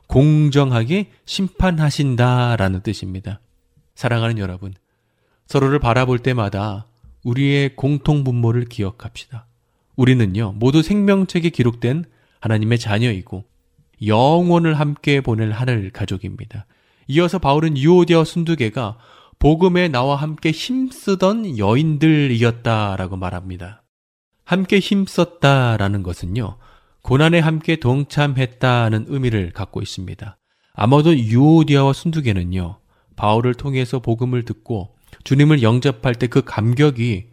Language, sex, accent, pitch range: Korean, male, native, 105-145 Hz